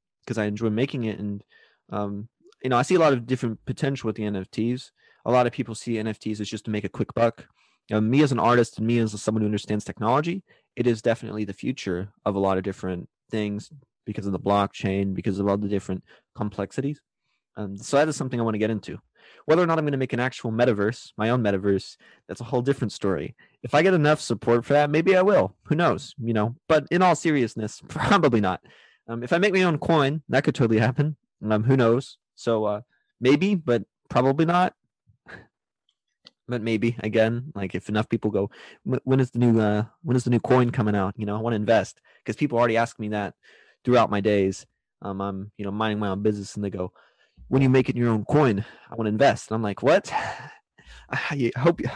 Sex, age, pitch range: male, 20-39, 105-130 Hz